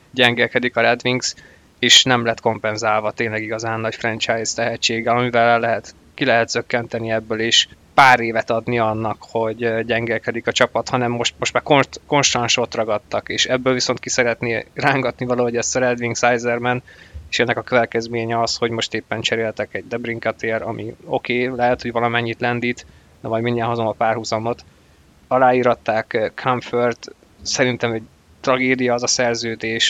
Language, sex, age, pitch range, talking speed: Hungarian, male, 20-39, 110-125 Hz, 155 wpm